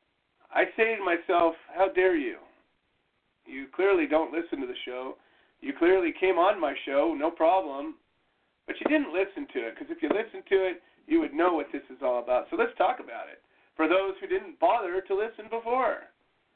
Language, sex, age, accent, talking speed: English, male, 40-59, American, 200 wpm